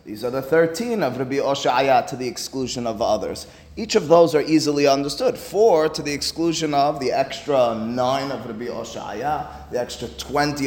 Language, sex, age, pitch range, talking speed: English, male, 30-49, 130-175 Hz, 185 wpm